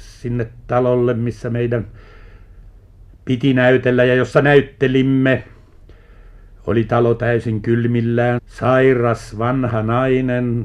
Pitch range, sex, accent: 100-130 Hz, male, native